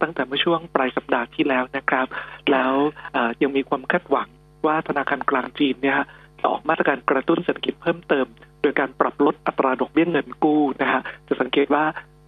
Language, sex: Thai, male